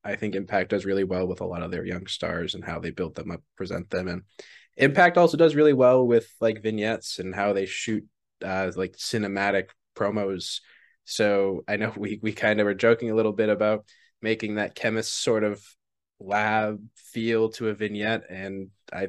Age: 20-39